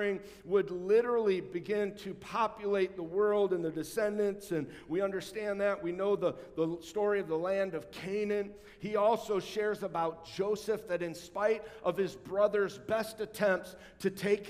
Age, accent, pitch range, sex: 50-69, American, 175-210 Hz, male